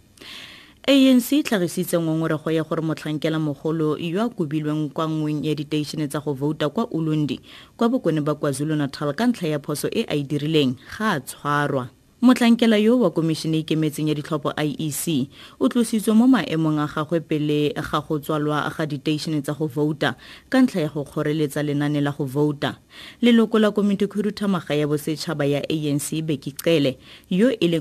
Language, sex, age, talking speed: English, female, 20-39, 150 wpm